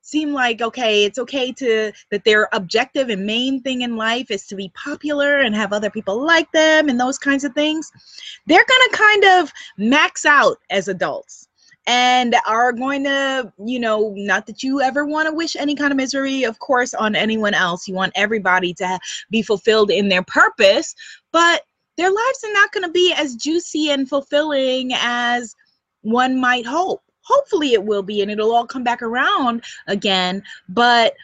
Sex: female